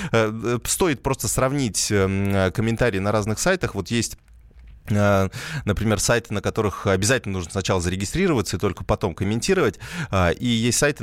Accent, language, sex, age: native, Russian, male, 20-39